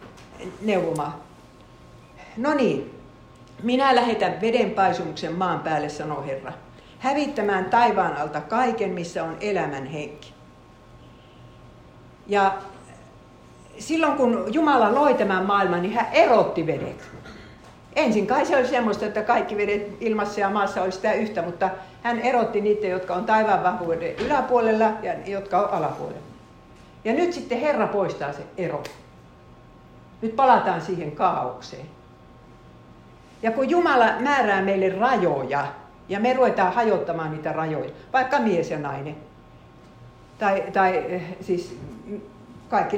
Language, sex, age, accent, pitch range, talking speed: Finnish, female, 60-79, native, 160-230 Hz, 125 wpm